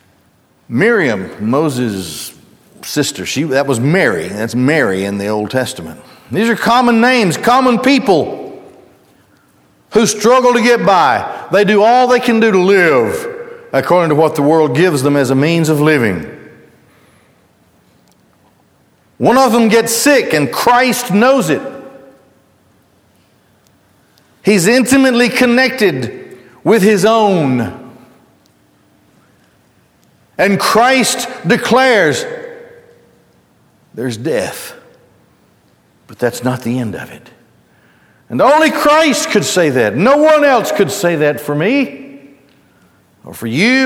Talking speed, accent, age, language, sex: 120 wpm, American, 60-79, English, male